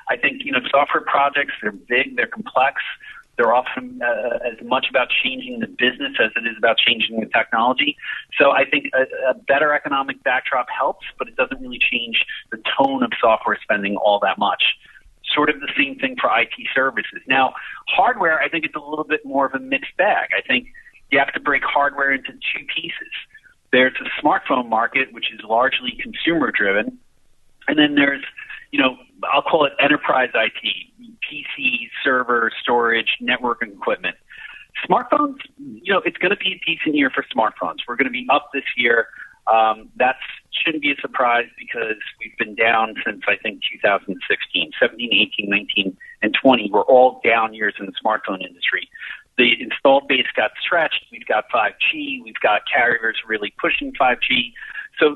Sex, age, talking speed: male, 40-59, 175 wpm